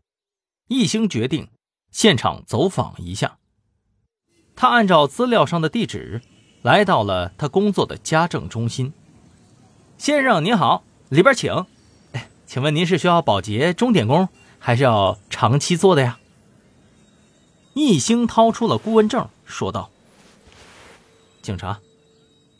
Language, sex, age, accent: Chinese, male, 30-49, native